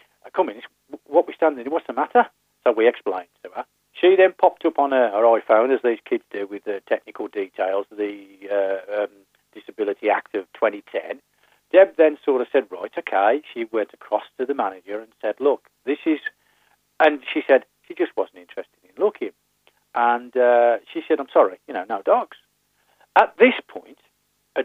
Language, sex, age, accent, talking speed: English, male, 40-59, British, 195 wpm